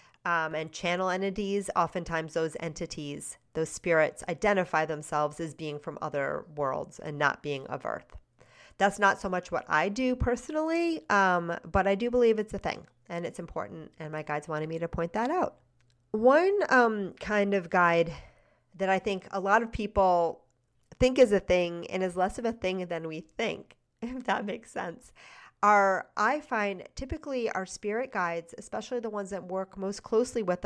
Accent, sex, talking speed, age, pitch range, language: American, female, 180 wpm, 40-59, 165-205 Hz, English